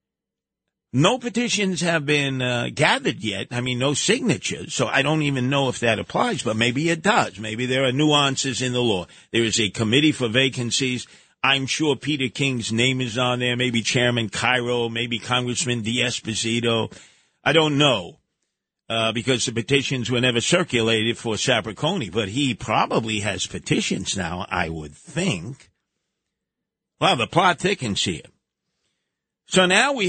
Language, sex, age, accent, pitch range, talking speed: English, male, 50-69, American, 115-145 Hz, 160 wpm